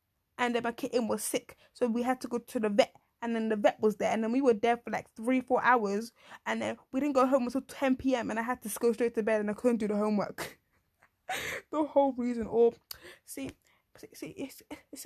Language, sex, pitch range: English, female, 235-290 Hz